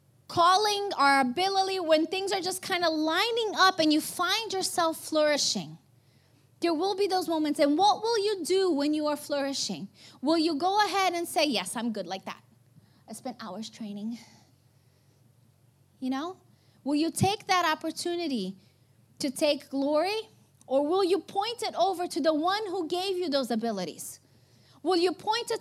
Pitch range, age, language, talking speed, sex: 220-365 Hz, 30-49, English, 170 wpm, female